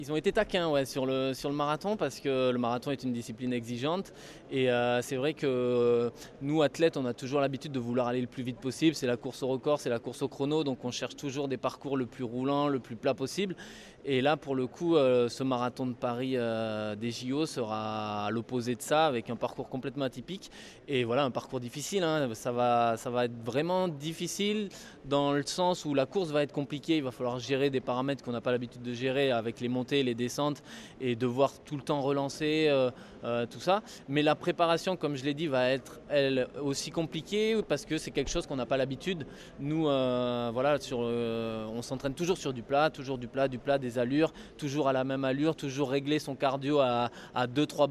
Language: French